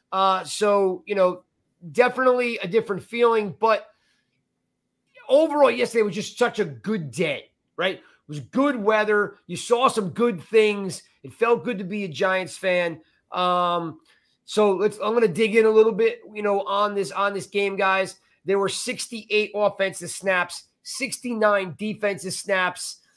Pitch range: 175-210 Hz